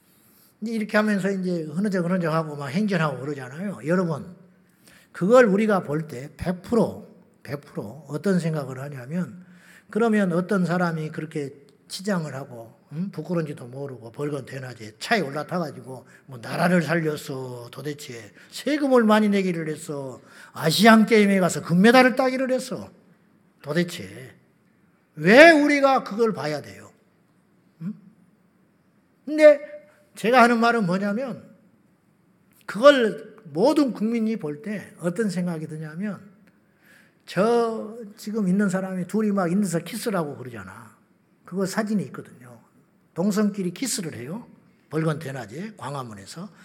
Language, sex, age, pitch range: Korean, male, 50-69, 155-215 Hz